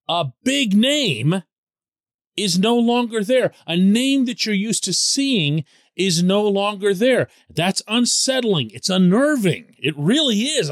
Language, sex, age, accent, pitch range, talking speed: English, male, 40-59, American, 135-205 Hz, 140 wpm